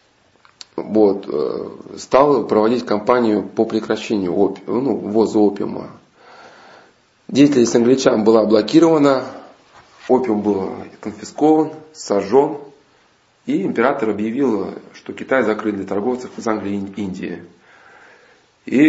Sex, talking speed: male, 95 wpm